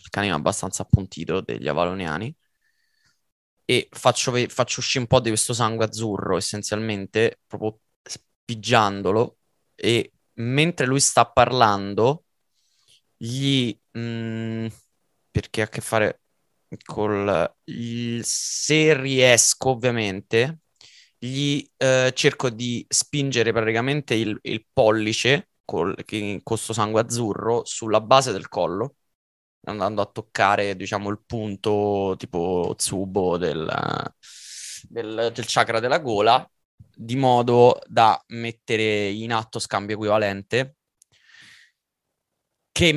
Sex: male